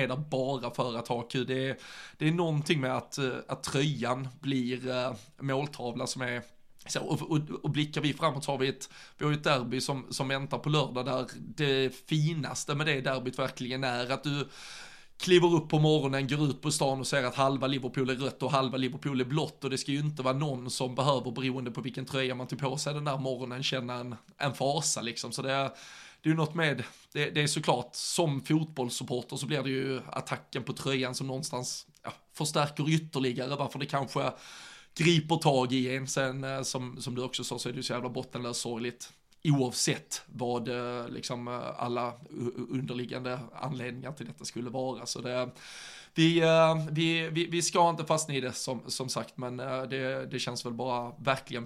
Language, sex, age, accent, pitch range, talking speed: Swedish, male, 20-39, native, 125-145 Hz, 190 wpm